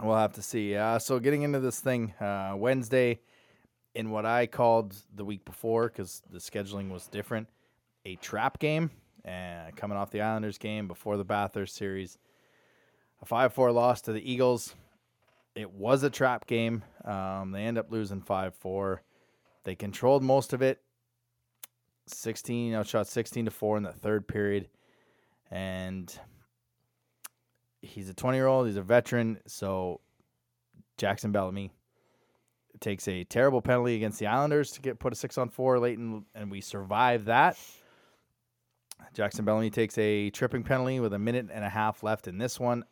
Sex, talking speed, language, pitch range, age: male, 155 wpm, English, 100-120 Hz, 20-39